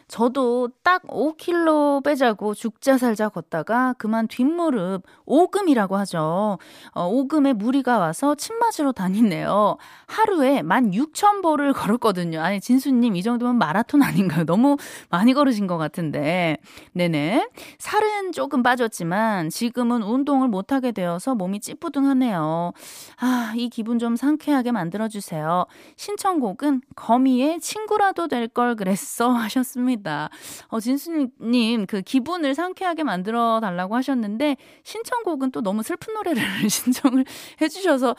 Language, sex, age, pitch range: Korean, female, 20-39, 200-290 Hz